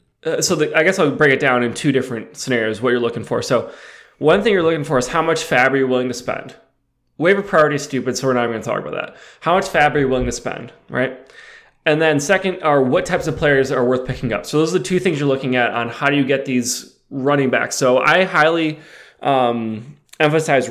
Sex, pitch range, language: male, 125-155 Hz, English